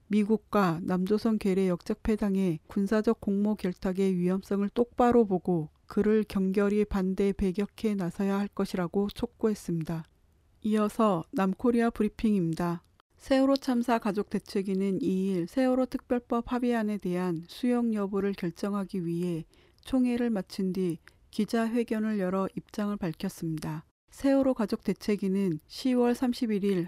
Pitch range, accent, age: 185-220 Hz, native, 40-59